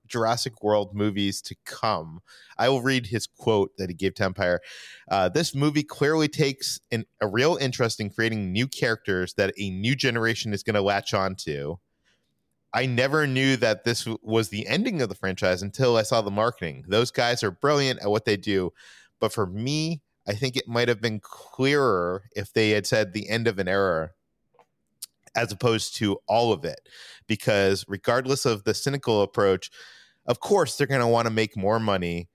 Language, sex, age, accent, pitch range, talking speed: English, male, 30-49, American, 100-125 Hz, 195 wpm